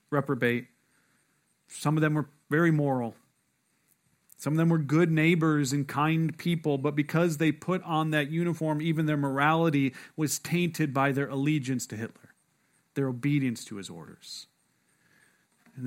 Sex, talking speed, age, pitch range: male, 150 wpm, 40-59, 135-165 Hz